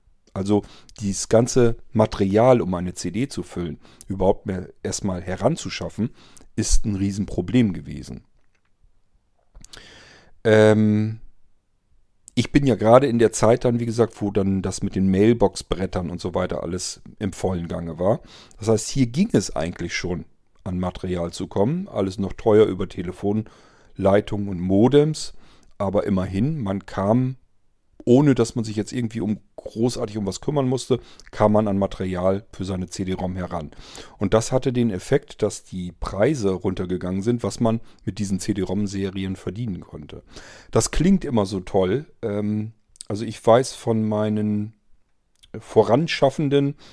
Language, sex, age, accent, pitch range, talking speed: German, male, 40-59, German, 95-115 Hz, 145 wpm